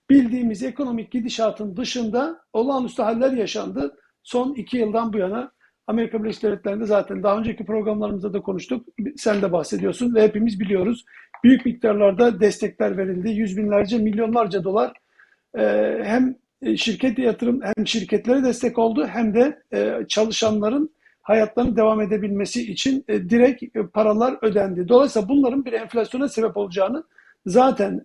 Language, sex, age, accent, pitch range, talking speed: Turkish, male, 50-69, native, 210-245 Hz, 125 wpm